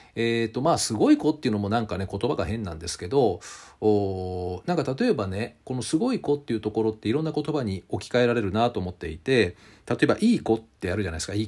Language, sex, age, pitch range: Japanese, male, 40-59, 100-155 Hz